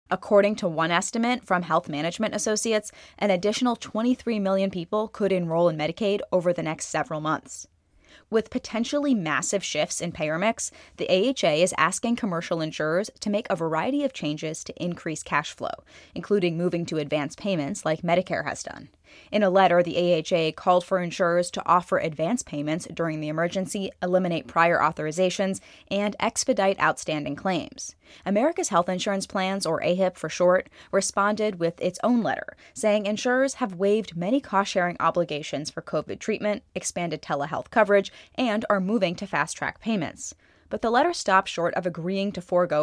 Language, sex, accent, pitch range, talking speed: English, female, American, 170-225 Hz, 165 wpm